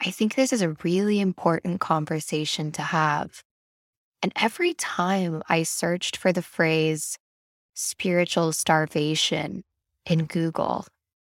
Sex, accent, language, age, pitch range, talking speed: female, American, English, 10-29, 150-175 Hz, 115 wpm